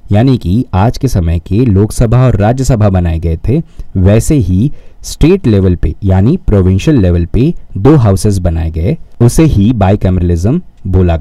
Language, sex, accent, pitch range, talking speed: Hindi, male, native, 95-130 Hz, 155 wpm